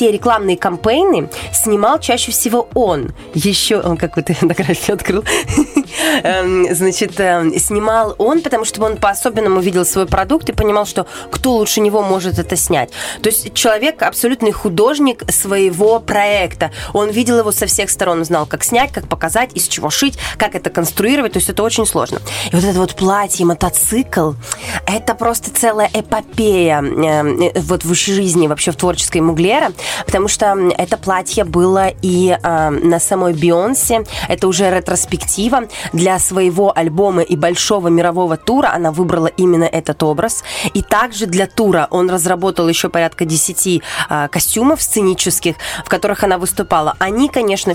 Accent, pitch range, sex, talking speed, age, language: native, 175-215 Hz, female, 150 wpm, 20-39, Russian